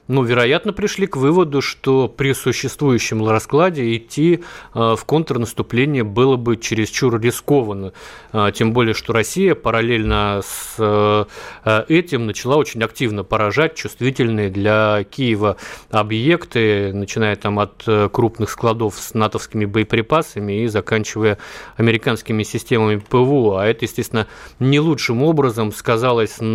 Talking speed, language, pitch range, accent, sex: 115 wpm, Russian, 105-125 Hz, native, male